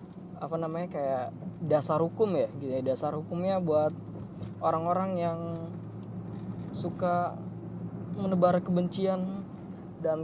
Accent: native